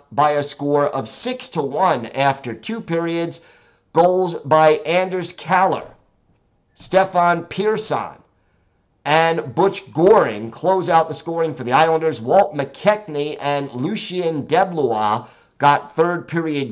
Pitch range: 135-165 Hz